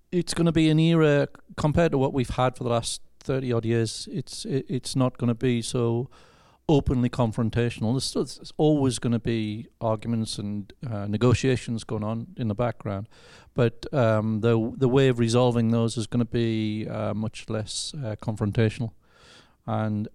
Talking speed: 175 wpm